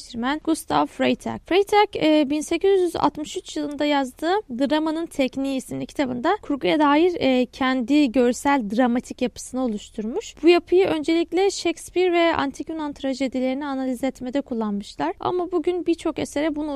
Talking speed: 120 wpm